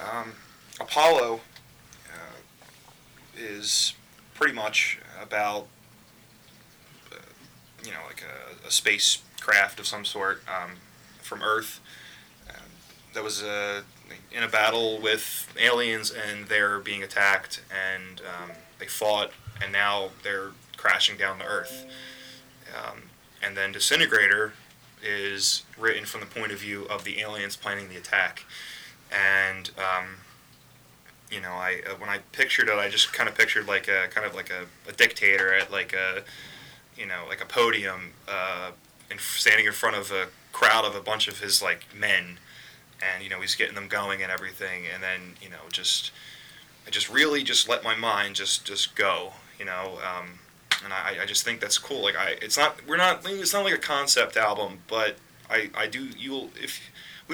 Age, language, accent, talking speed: 20-39, English, American, 170 wpm